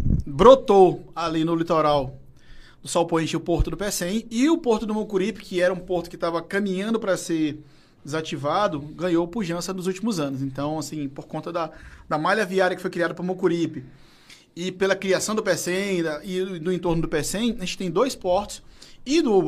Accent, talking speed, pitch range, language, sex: Brazilian, 200 wpm, 160-195 Hz, Portuguese, male